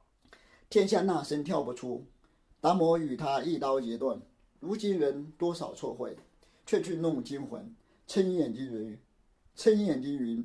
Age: 50-69